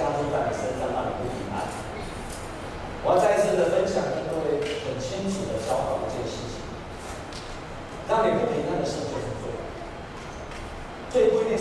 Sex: male